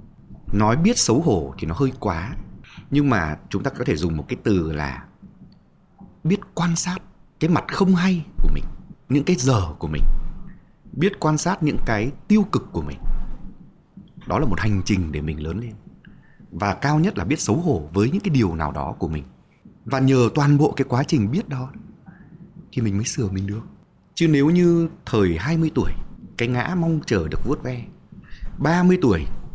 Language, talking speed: Vietnamese, 195 wpm